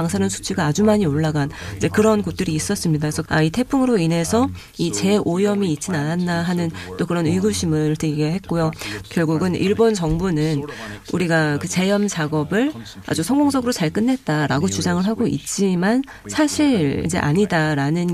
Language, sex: Korean, female